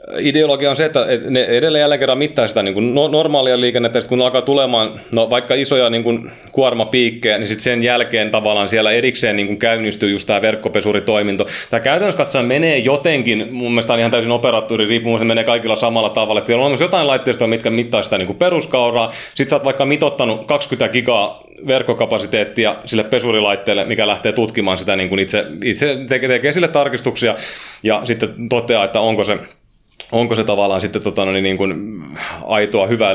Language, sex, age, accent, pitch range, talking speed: Finnish, male, 30-49, native, 110-145 Hz, 185 wpm